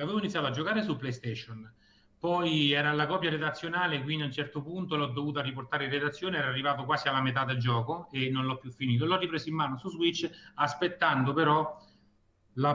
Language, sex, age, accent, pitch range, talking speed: Italian, male, 30-49, native, 125-165 Hz, 200 wpm